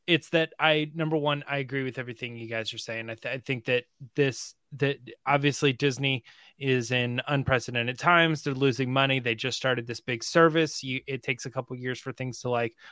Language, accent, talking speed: English, American, 215 wpm